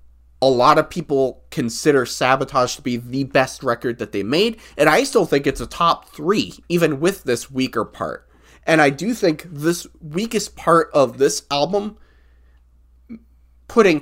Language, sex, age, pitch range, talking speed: English, male, 20-39, 115-155 Hz, 165 wpm